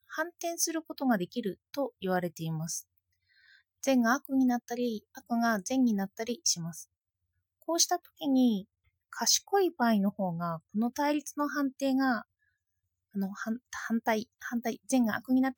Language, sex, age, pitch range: Japanese, female, 20-39, 185-290 Hz